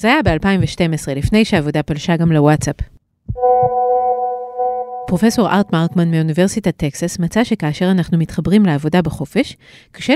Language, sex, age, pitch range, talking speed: Hebrew, female, 30-49, 160-210 Hz, 120 wpm